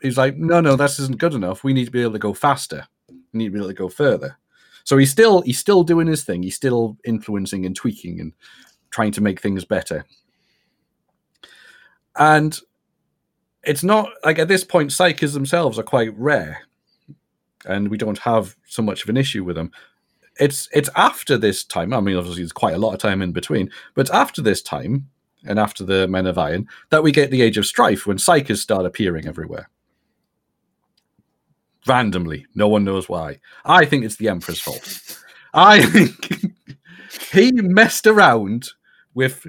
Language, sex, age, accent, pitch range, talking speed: English, male, 40-59, British, 105-150 Hz, 185 wpm